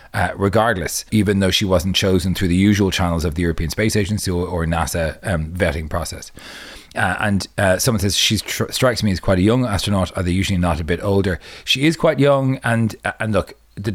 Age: 30-49